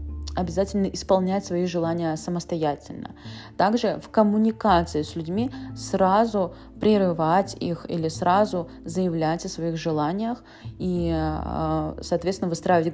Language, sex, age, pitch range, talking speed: Russian, female, 20-39, 160-200 Hz, 100 wpm